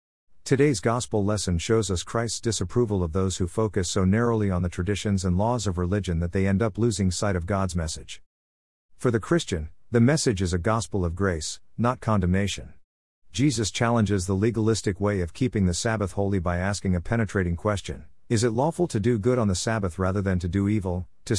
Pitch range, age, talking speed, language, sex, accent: 90-115 Hz, 50-69, 200 wpm, English, male, American